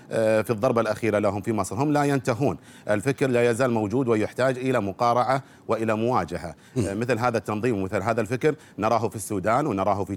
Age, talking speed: 50-69, 170 wpm